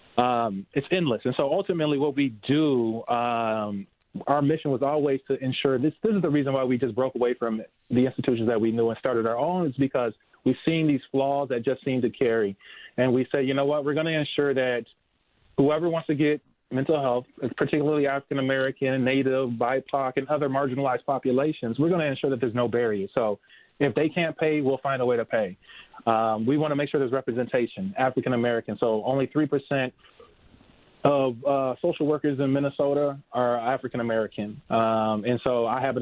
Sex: male